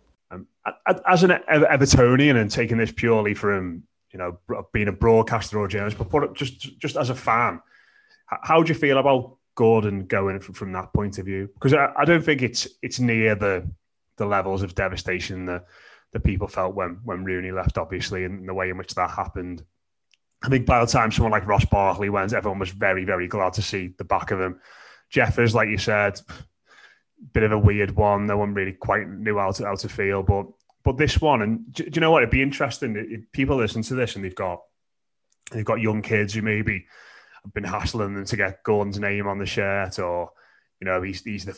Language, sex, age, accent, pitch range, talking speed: English, male, 20-39, British, 95-120 Hz, 210 wpm